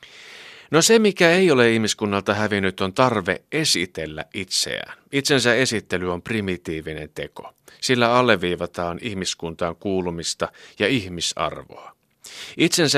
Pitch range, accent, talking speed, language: 90-115 Hz, native, 105 wpm, Finnish